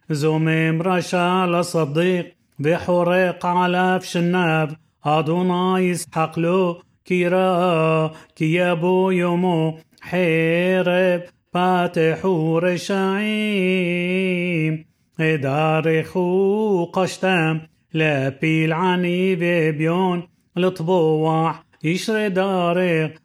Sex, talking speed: male, 65 wpm